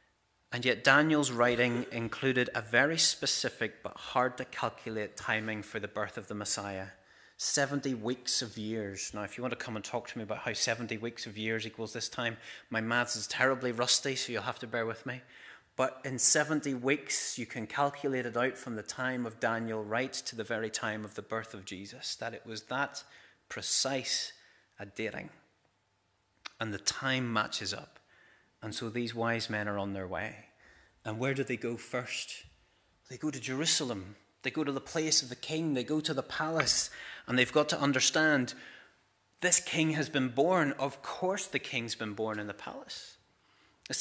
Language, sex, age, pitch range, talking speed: English, male, 30-49, 115-140 Hz, 195 wpm